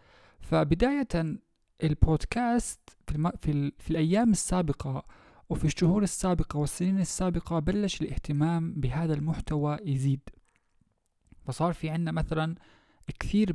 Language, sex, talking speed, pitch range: Arabic, male, 95 wpm, 140-175 Hz